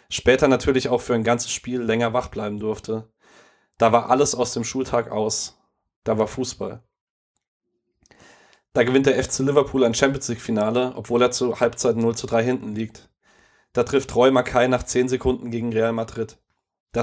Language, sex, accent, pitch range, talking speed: German, male, German, 110-125 Hz, 170 wpm